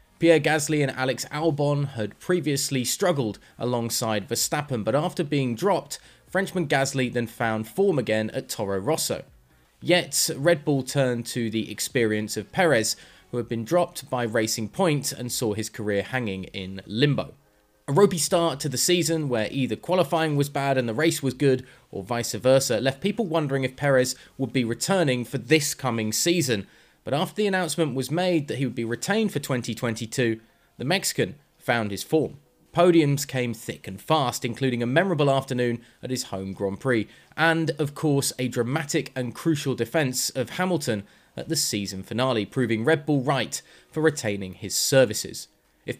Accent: British